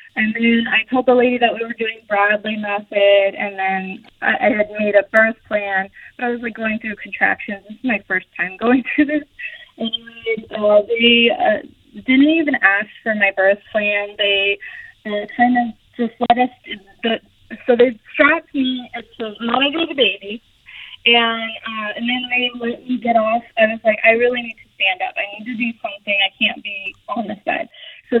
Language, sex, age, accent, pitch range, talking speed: English, female, 20-39, American, 205-245 Hz, 200 wpm